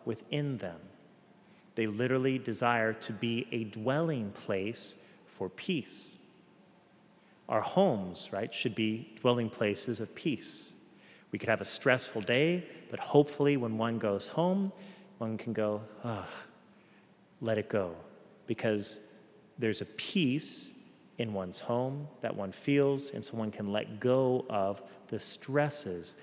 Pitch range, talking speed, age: 110-140 Hz, 135 wpm, 40-59